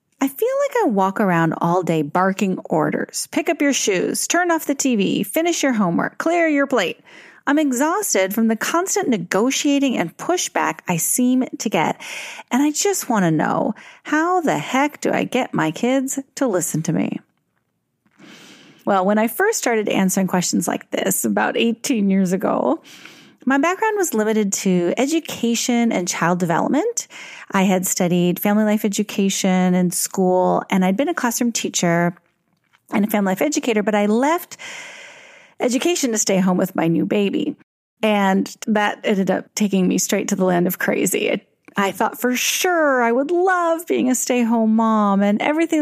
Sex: female